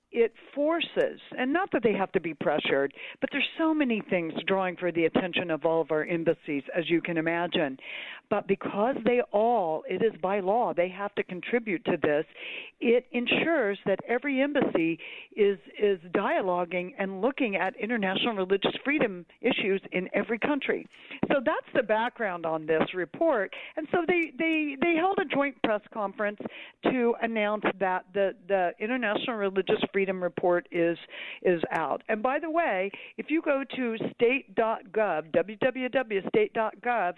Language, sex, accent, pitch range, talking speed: English, female, American, 190-270 Hz, 165 wpm